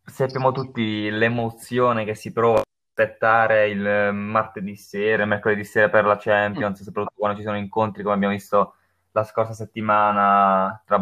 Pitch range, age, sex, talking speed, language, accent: 100-115 Hz, 20-39, male, 160 wpm, Italian, native